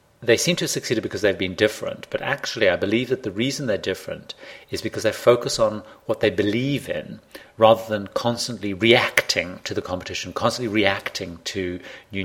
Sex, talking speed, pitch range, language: male, 185 wpm, 95-115 Hz, English